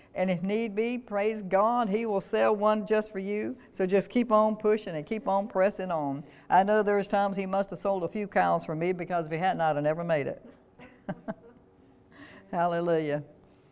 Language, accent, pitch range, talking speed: English, American, 155-195 Hz, 200 wpm